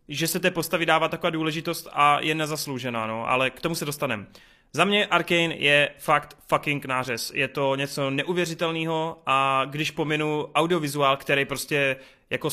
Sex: male